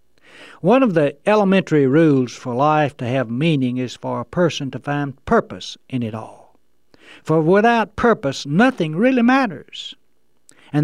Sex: male